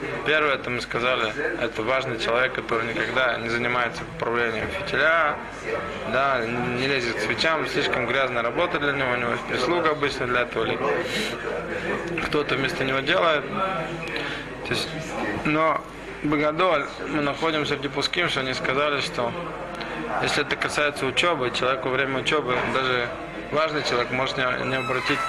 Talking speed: 140 wpm